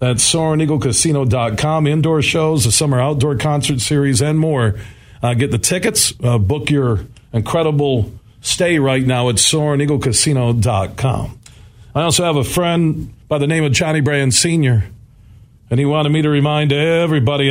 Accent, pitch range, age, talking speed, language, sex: American, 125-155 Hz, 50-69, 145 wpm, English, male